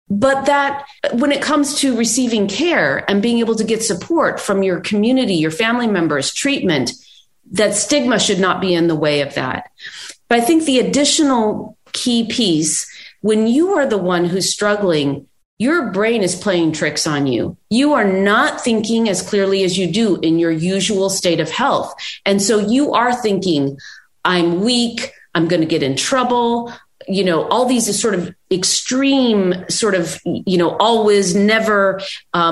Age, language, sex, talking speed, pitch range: 40-59, English, female, 175 wpm, 180-235 Hz